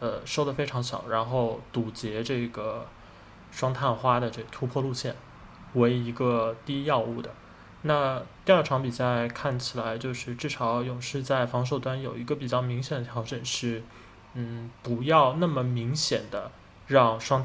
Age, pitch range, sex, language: 20-39, 115-130 Hz, male, Chinese